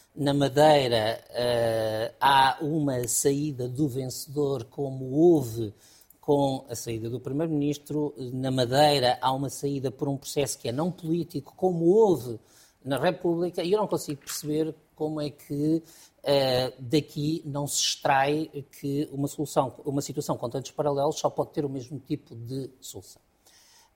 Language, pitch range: Portuguese, 135-170 Hz